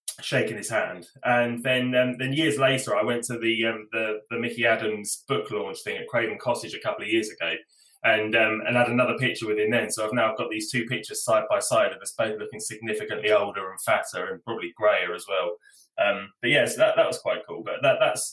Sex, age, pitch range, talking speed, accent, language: male, 20-39, 115-155 Hz, 235 wpm, British, English